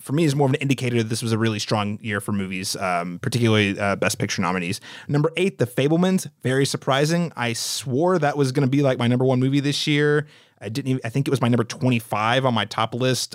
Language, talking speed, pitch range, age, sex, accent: English, 250 wpm, 110-135 Hz, 30-49, male, American